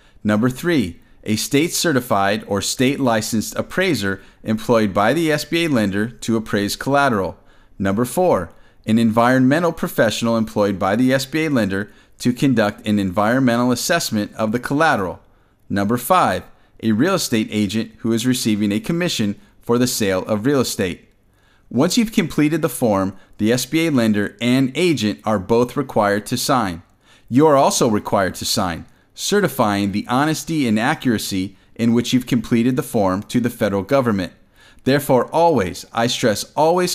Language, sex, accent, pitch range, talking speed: English, male, American, 105-140 Hz, 150 wpm